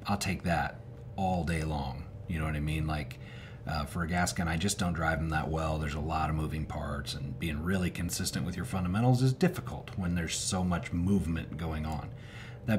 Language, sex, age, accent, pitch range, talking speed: English, male, 40-59, American, 85-115 Hz, 220 wpm